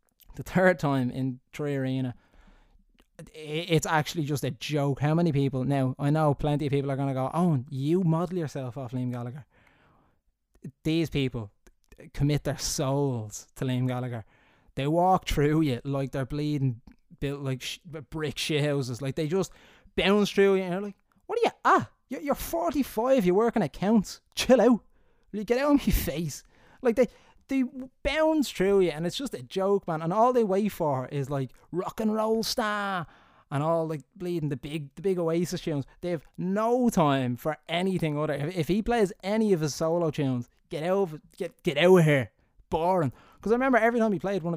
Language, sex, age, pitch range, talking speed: English, male, 20-39, 140-200 Hz, 190 wpm